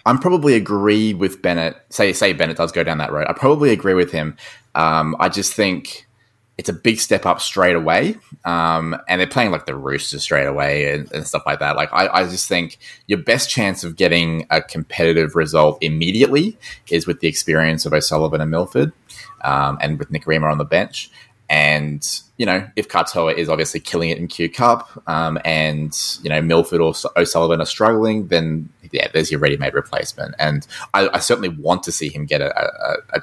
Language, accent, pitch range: English, Australian, 75-95 Hz